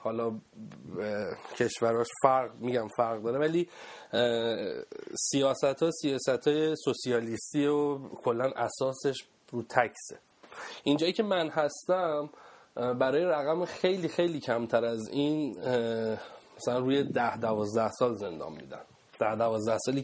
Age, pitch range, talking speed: 30-49, 120-155 Hz, 115 wpm